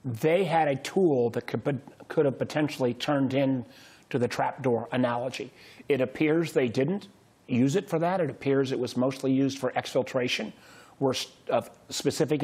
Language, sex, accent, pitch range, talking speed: English, male, American, 130-150 Hz, 155 wpm